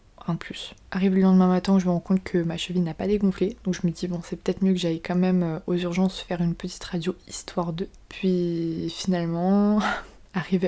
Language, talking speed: French, 220 wpm